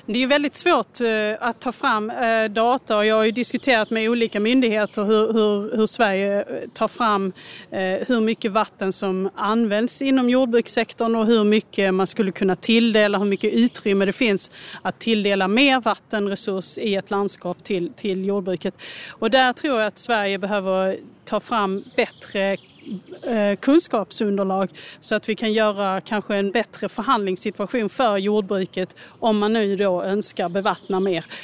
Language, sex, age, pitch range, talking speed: Swedish, female, 30-49, 195-230 Hz, 150 wpm